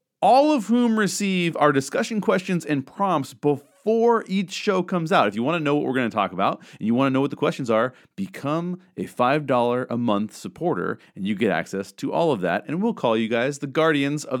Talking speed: 235 wpm